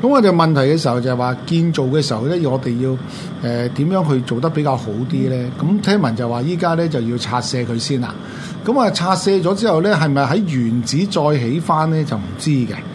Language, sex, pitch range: Chinese, male, 125-180 Hz